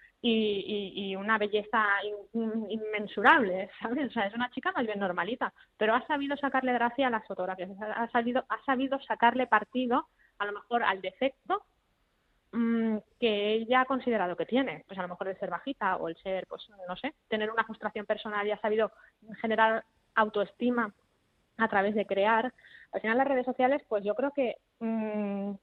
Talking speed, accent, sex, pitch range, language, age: 185 wpm, Spanish, female, 205-245 Hz, Spanish, 20-39